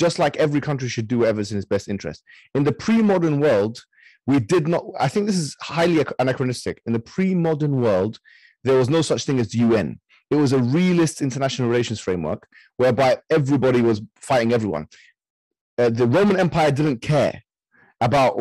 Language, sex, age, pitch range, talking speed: English, male, 30-49, 125-170 Hz, 180 wpm